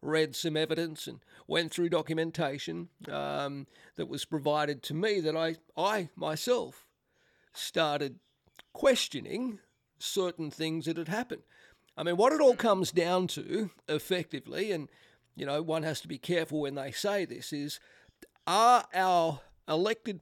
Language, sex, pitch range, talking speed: English, male, 150-185 Hz, 145 wpm